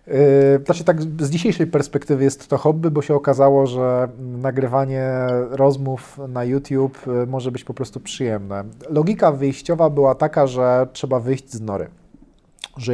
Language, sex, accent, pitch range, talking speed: Polish, male, native, 125-160 Hz, 150 wpm